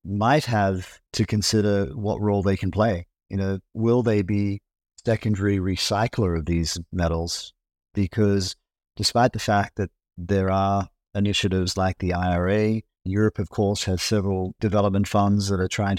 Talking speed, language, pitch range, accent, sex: 150 wpm, English, 95-110 Hz, Australian, male